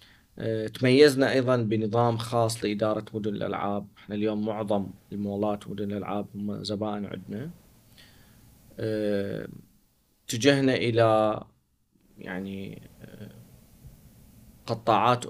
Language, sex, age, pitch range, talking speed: Arabic, male, 30-49, 100-115 Hz, 75 wpm